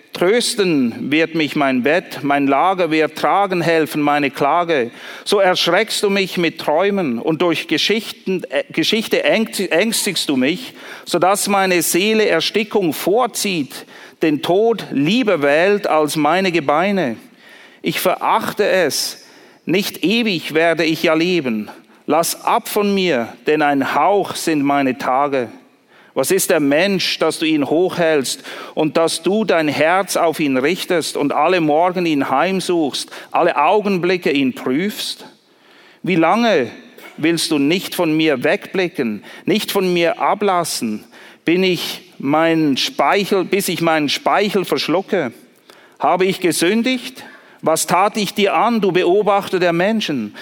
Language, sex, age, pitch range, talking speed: German, male, 50-69, 160-205 Hz, 135 wpm